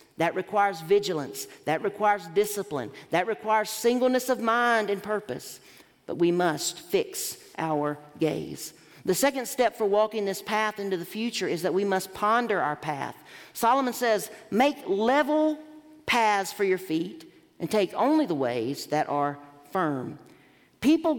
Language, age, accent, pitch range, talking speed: English, 50-69, American, 175-255 Hz, 150 wpm